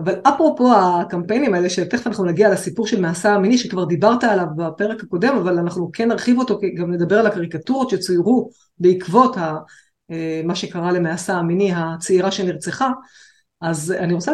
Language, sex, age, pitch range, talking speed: Hebrew, female, 30-49, 180-240 Hz, 160 wpm